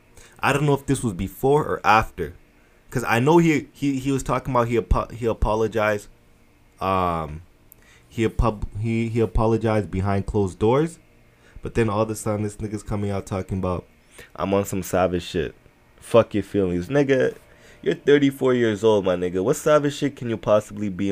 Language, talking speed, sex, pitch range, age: English, 185 wpm, male, 85-115 Hz, 20-39